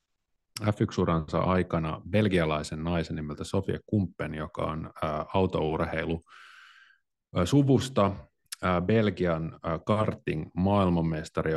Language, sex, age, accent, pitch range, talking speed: Finnish, male, 30-49, native, 80-95 Hz, 90 wpm